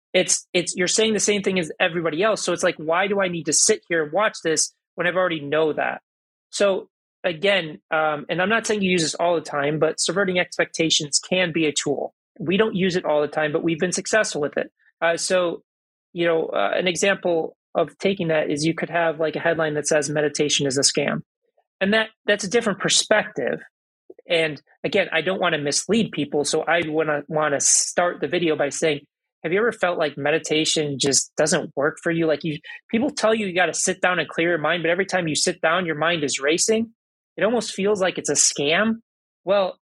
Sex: male